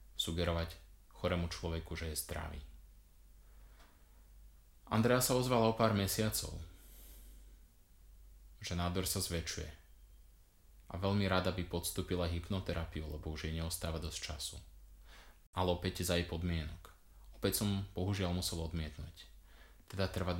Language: Slovak